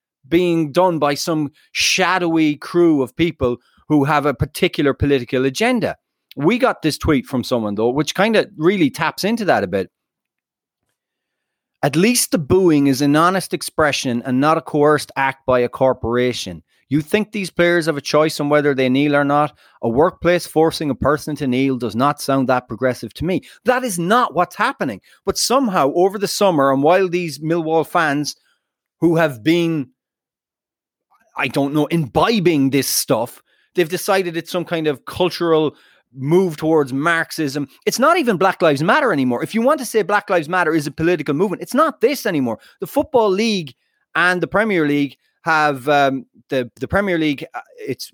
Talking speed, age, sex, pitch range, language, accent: 180 wpm, 30-49, male, 140-180 Hz, English, Irish